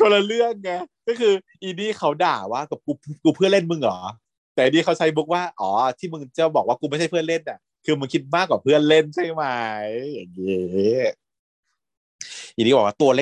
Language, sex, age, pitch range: Thai, male, 30-49, 115-170 Hz